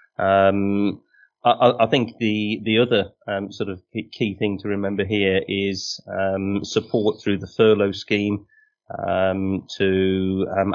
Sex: male